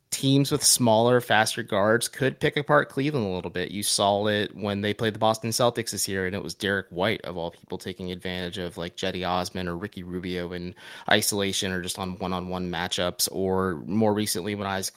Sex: male